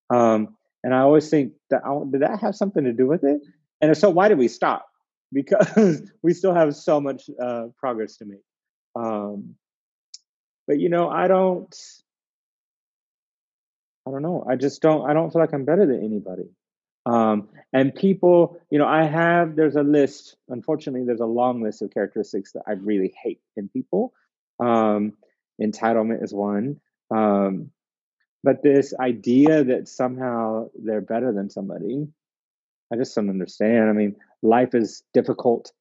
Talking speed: 165 wpm